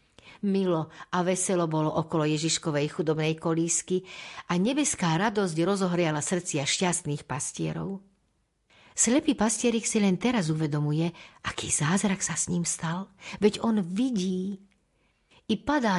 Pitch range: 160-210 Hz